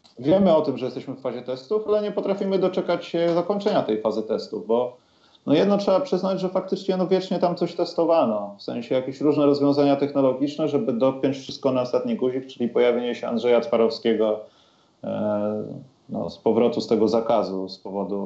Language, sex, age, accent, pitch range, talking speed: Polish, male, 30-49, native, 110-140 Hz, 180 wpm